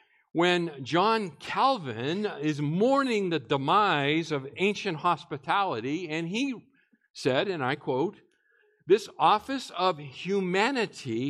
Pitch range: 140-200 Hz